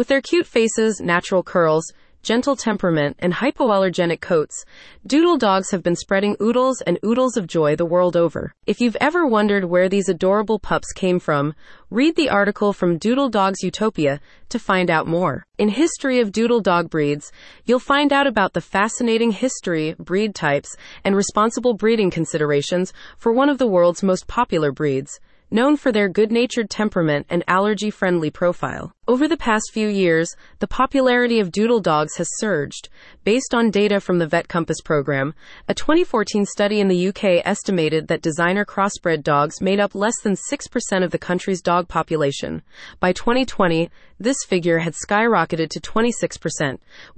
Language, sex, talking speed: English, female, 165 wpm